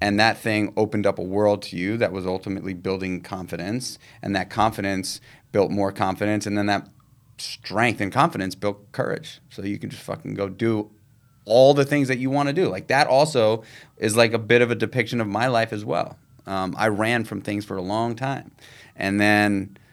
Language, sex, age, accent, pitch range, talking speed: English, male, 30-49, American, 95-120 Hz, 210 wpm